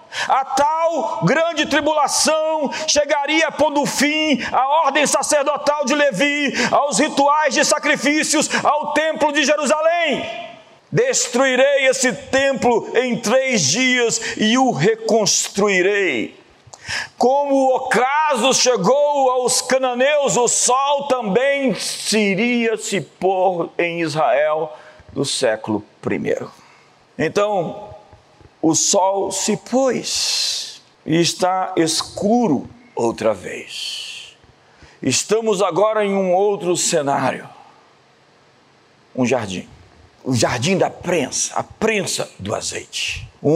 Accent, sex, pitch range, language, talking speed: Brazilian, male, 190-285 Hz, Portuguese, 100 wpm